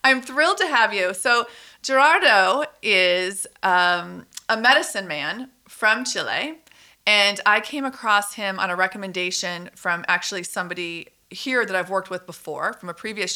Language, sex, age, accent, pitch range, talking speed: English, female, 40-59, American, 185-230 Hz, 155 wpm